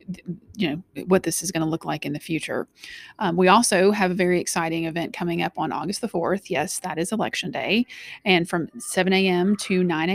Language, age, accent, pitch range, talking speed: English, 30-49, American, 180-205 Hz, 220 wpm